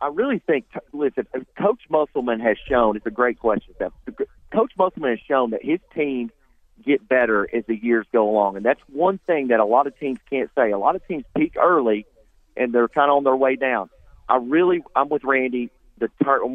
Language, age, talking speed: English, 40-59, 205 wpm